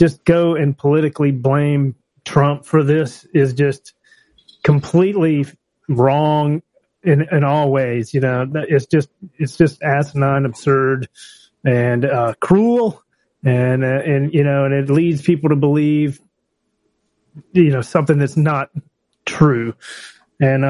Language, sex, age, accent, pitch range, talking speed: English, male, 30-49, American, 135-170 Hz, 130 wpm